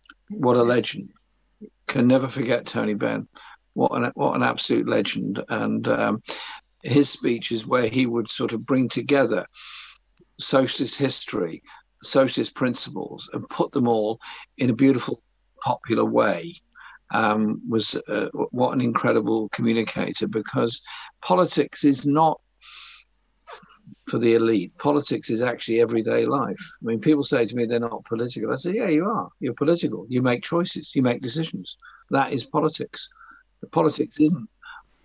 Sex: male